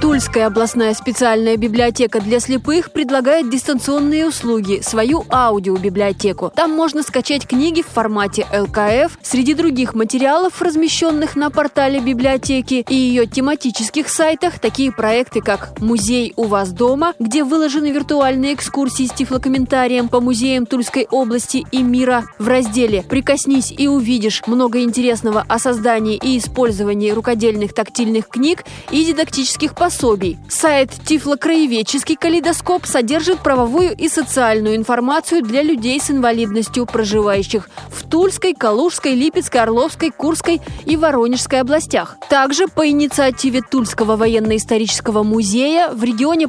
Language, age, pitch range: Russian, 20-39, 230-300 Hz